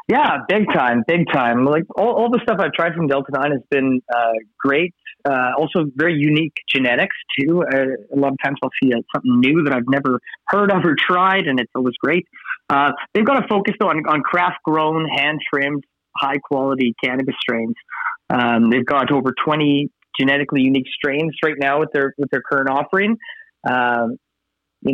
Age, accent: 30-49, American